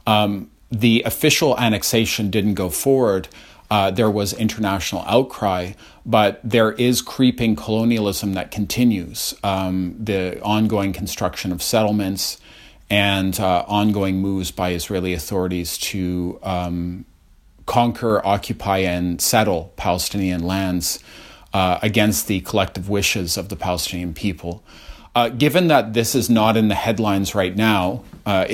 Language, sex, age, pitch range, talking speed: English, male, 40-59, 90-110 Hz, 130 wpm